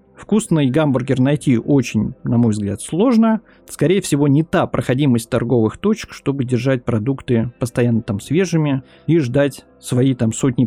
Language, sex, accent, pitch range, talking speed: Russian, male, native, 115-165 Hz, 145 wpm